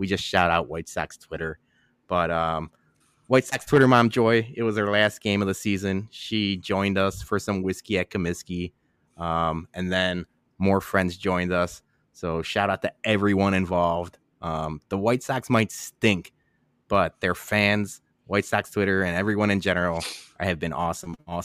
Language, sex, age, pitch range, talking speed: English, male, 20-39, 90-110 Hz, 180 wpm